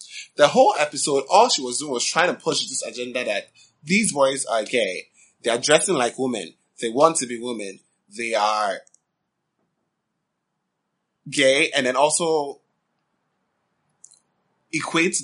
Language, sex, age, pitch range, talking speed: English, male, 20-39, 120-170 Hz, 140 wpm